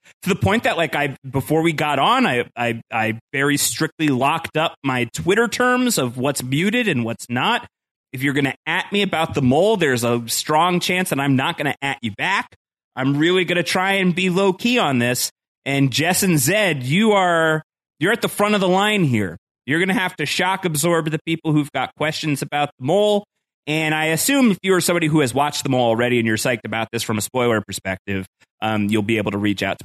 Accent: American